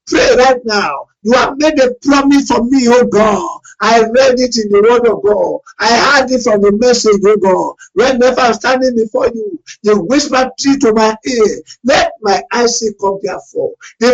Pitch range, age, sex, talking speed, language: 205-275 Hz, 50-69, male, 205 wpm, English